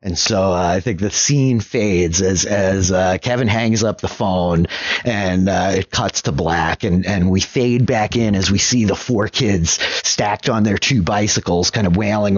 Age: 30-49